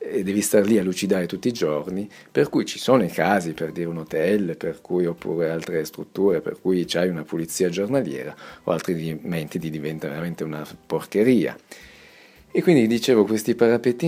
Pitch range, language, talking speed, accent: 85-110 Hz, Italian, 180 wpm, native